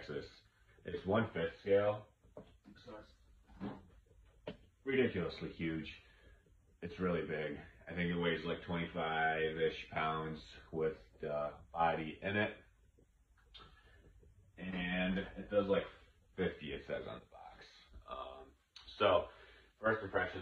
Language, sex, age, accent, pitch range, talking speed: English, male, 30-49, American, 75-95 Hz, 105 wpm